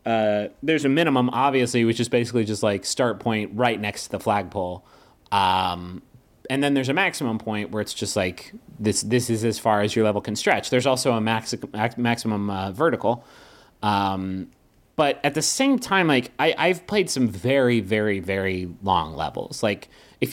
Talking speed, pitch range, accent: 185 wpm, 105-140 Hz, American